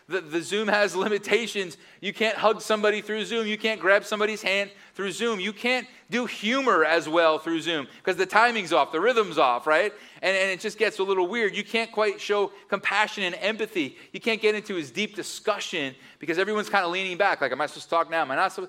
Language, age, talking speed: English, 30-49, 235 wpm